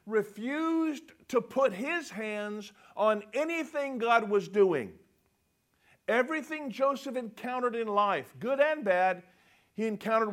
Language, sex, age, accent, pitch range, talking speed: English, male, 50-69, American, 190-255 Hz, 115 wpm